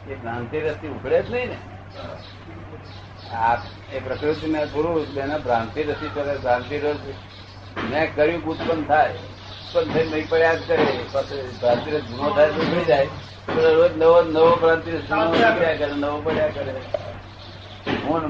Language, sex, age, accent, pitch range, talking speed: Gujarati, male, 60-79, native, 100-145 Hz, 40 wpm